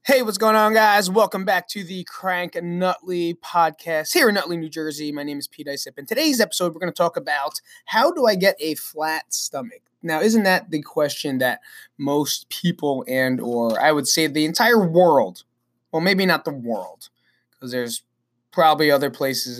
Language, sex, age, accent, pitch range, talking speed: English, male, 20-39, American, 140-180 Hz, 195 wpm